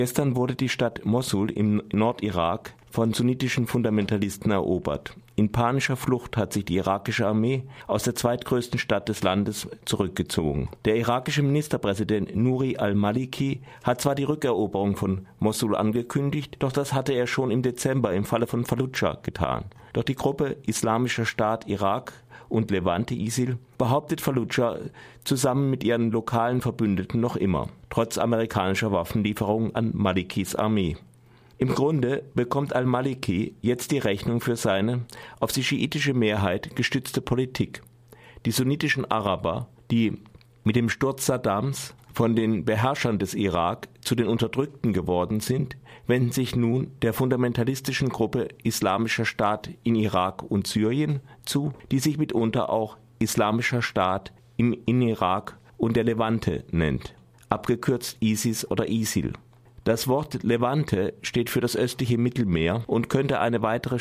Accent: German